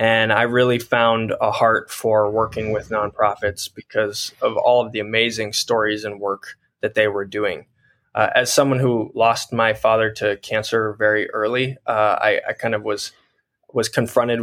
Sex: male